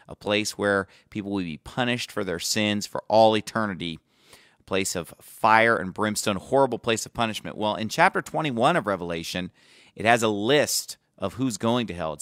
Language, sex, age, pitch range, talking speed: English, male, 40-59, 95-135 Hz, 195 wpm